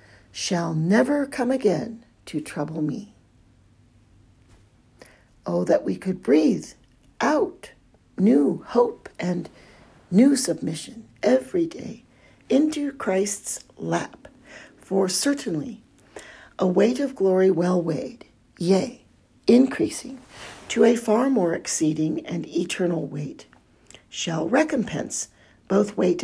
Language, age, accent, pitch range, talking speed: English, 50-69, American, 160-230 Hz, 105 wpm